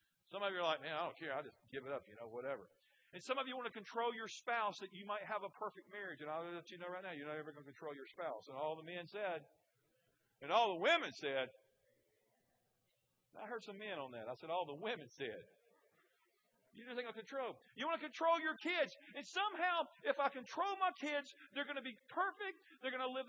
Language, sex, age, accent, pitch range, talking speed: English, male, 50-69, American, 195-315 Hz, 255 wpm